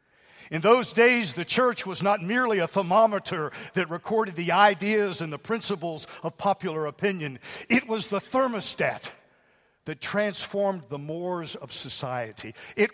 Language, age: English, 50-69